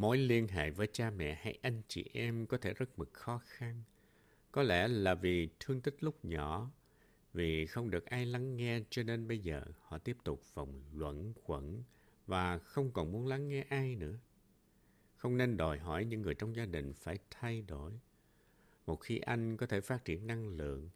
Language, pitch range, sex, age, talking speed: Vietnamese, 85-120 Hz, male, 60-79, 200 wpm